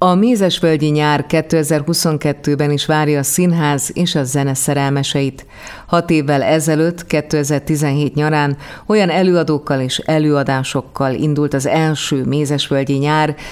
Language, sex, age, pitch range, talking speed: Hungarian, female, 30-49, 140-160 Hz, 115 wpm